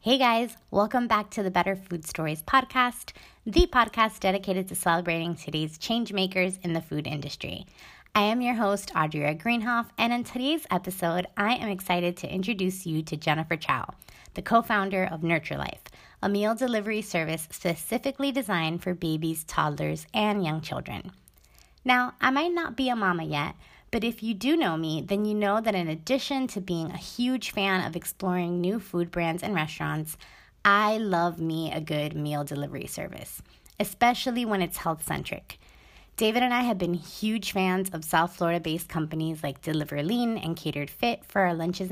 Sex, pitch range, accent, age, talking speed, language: female, 160-220 Hz, American, 30-49, 175 wpm, English